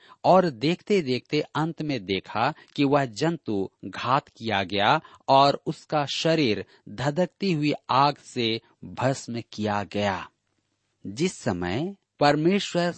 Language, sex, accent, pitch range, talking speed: Hindi, male, native, 110-155 Hz, 115 wpm